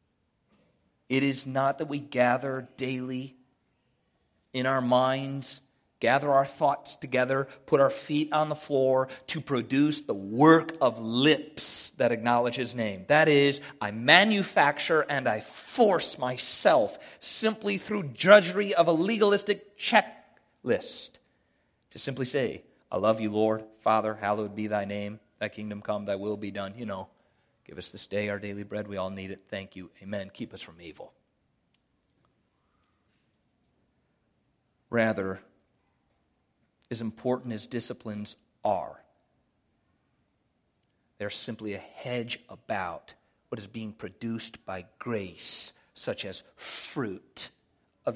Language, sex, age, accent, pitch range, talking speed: English, male, 40-59, American, 105-135 Hz, 130 wpm